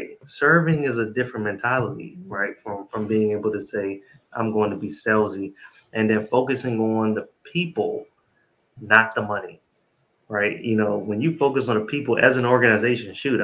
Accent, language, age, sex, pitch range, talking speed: American, English, 20-39, male, 105-120 Hz, 175 wpm